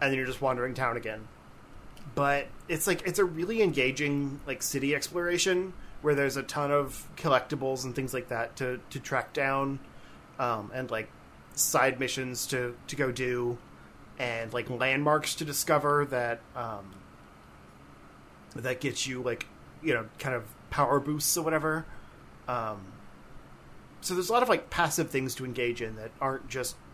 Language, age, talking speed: English, 30-49, 165 wpm